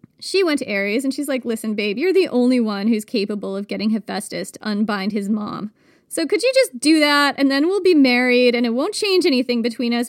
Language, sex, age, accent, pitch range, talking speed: English, female, 20-39, American, 240-315 Hz, 240 wpm